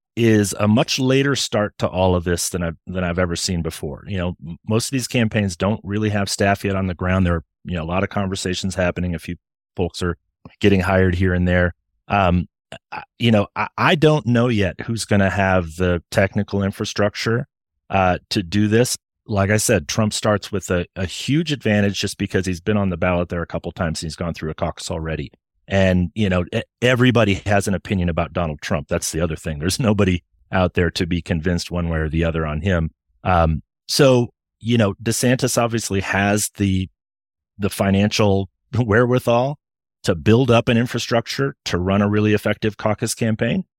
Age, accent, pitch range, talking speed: 30-49, American, 90-115 Hz, 200 wpm